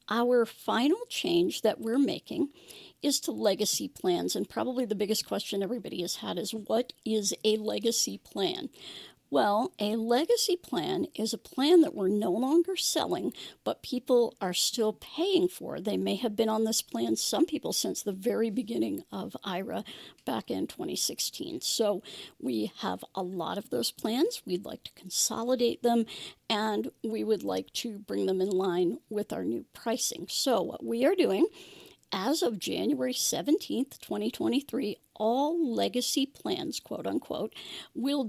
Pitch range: 215-305 Hz